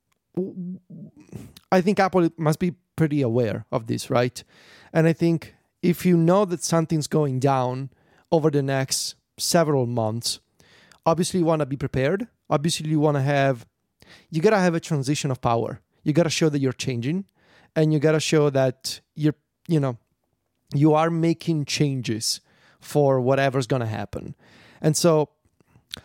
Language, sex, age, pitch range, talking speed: English, male, 30-49, 135-170 Hz, 165 wpm